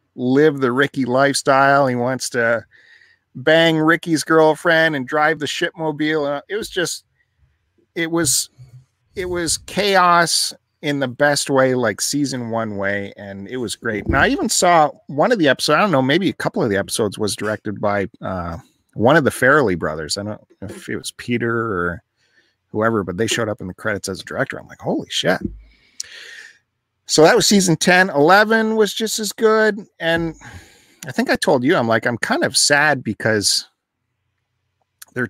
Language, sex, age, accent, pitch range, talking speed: English, male, 40-59, American, 110-155 Hz, 185 wpm